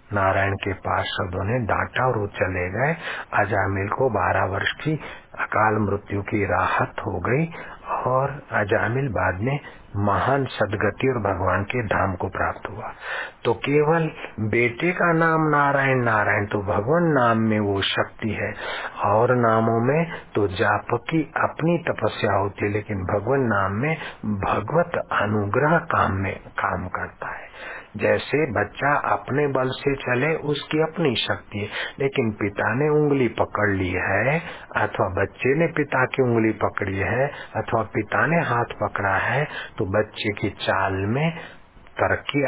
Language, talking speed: Hindi, 145 wpm